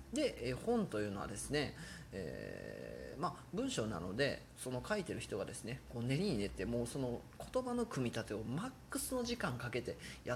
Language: Japanese